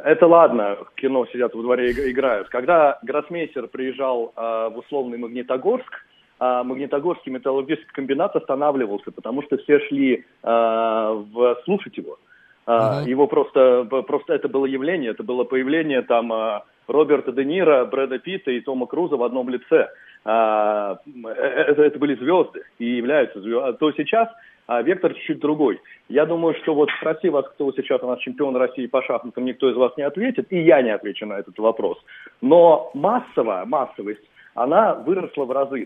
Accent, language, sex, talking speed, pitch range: native, Russian, male, 165 wpm, 125-165 Hz